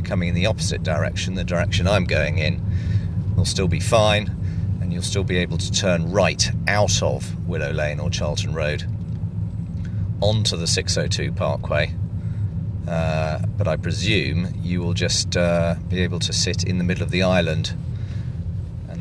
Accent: British